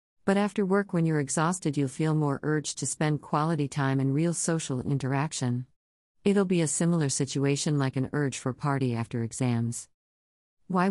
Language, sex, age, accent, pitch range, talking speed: English, female, 40-59, American, 130-170 Hz, 170 wpm